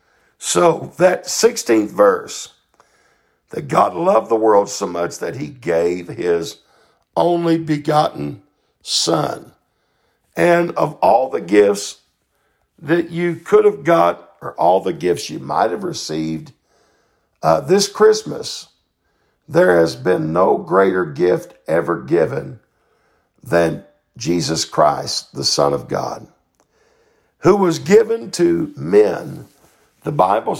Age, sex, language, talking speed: 60-79, male, English, 120 wpm